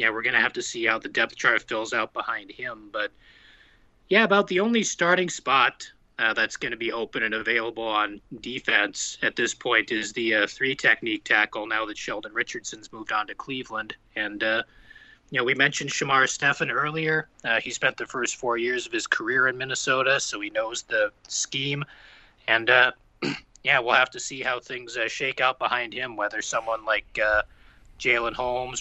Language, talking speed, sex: English, 195 wpm, male